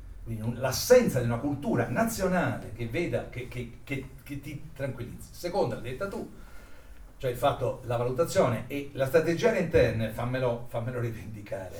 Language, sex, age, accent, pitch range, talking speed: Italian, male, 50-69, native, 110-140 Hz, 160 wpm